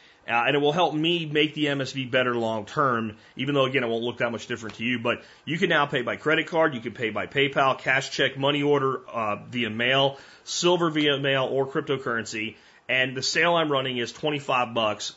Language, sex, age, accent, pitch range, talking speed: English, male, 30-49, American, 120-155 Hz, 220 wpm